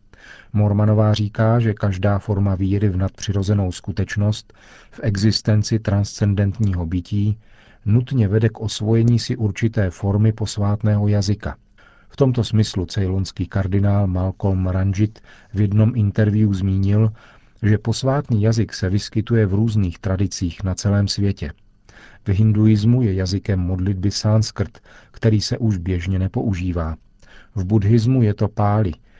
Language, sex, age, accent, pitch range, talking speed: Czech, male, 40-59, native, 95-110 Hz, 125 wpm